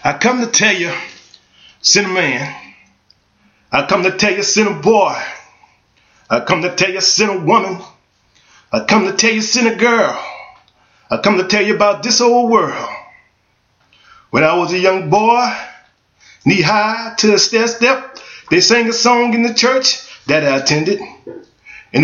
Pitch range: 200-255 Hz